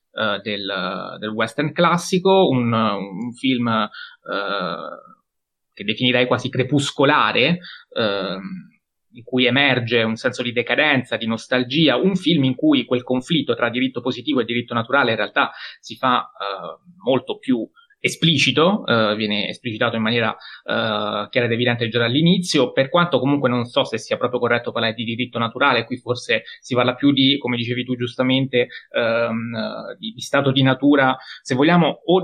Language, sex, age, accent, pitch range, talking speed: Italian, male, 20-39, native, 120-150 Hz, 165 wpm